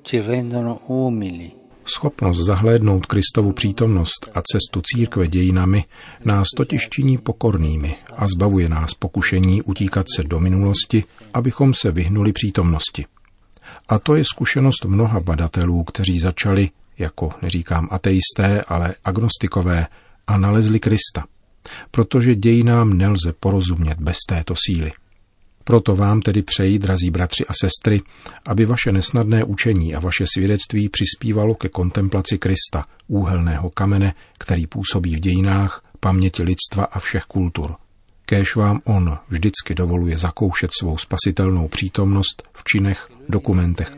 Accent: native